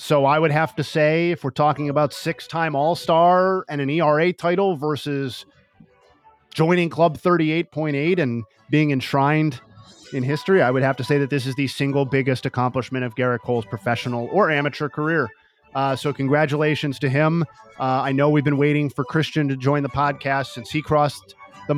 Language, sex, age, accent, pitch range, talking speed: English, male, 30-49, American, 130-165 Hz, 180 wpm